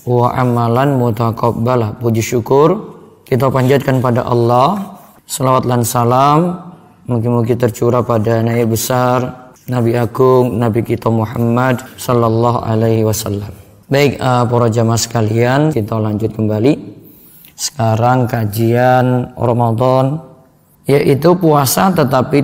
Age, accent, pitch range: 20-39, native, 120-140 Hz